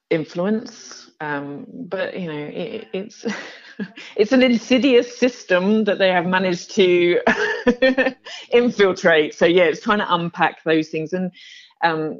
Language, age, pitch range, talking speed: English, 40-59, 135-210 Hz, 130 wpm